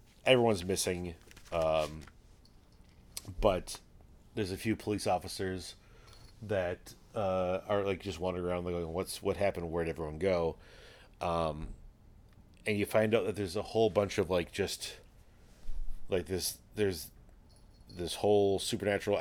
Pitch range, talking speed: 80-105 Hz, 130 wpm